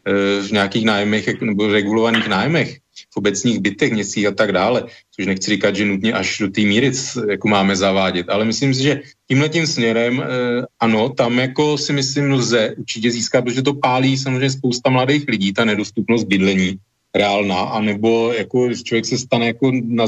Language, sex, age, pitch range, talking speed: Slovak, male, 40-59, 115-135 Hz, 170 wpm